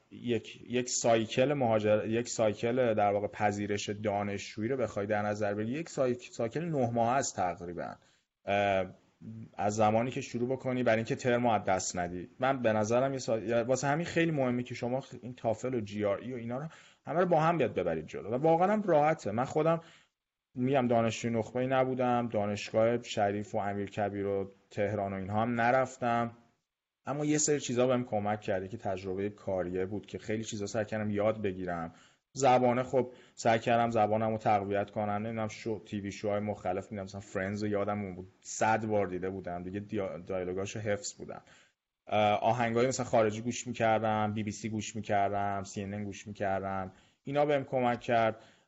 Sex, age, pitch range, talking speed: male, 30-49, 105-125 Hz, 175 wpm